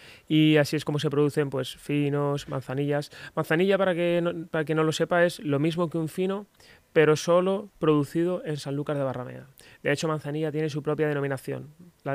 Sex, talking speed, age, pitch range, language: male, 200 wpm, 20-39, 135-155 Hz, Spanish